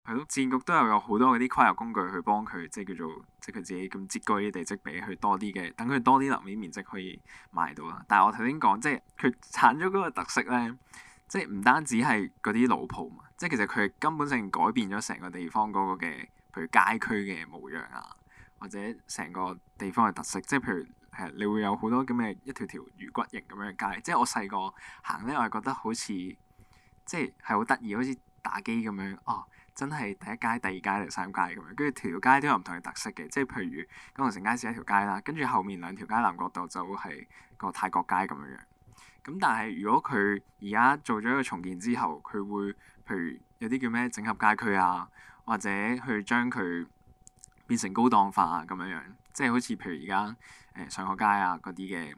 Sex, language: male, Chinese